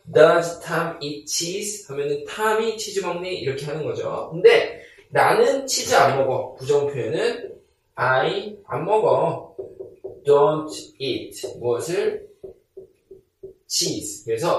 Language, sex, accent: Korean, male, native